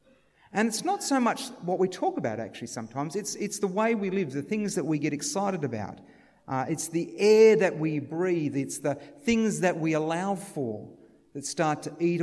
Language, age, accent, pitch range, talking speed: English, 50-69, Australian, 135-190 Hz, 205 wpm